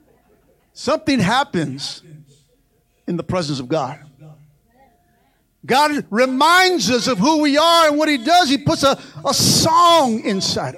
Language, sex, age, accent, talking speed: English, male, 50-69, American, 135 wpm